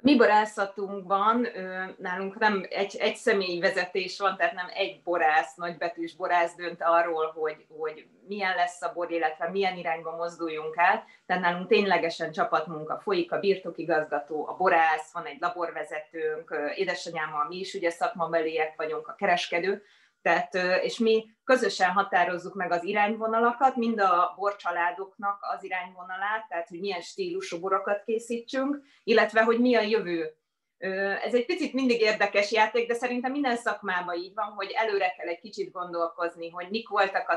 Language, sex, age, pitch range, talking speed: Hungarian, female, 20-39, 170-210 Hz, 150 wpm